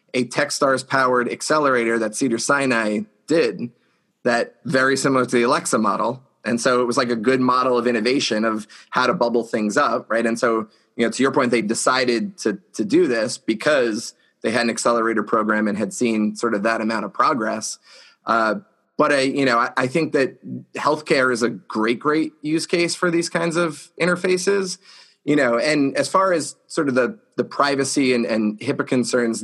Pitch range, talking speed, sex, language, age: 115-140 Hz, 195 wpm, male, English, 30-49